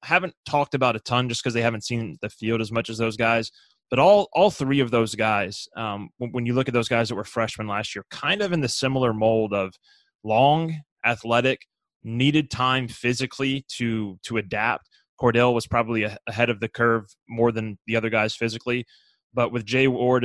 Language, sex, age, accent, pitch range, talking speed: English, male, 20-39, American, 110-130 Hz, 205 wpm